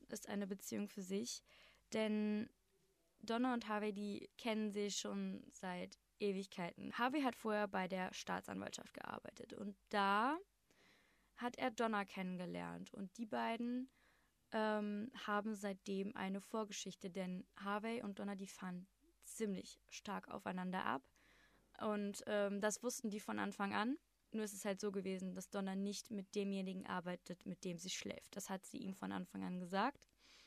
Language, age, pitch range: German, 20-39, 190-215 Hz